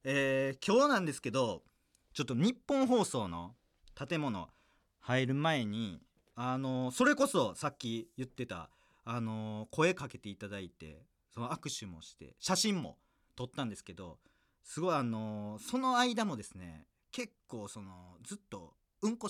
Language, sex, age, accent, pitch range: Japanese, male, 40-59, native, 95-150 Hz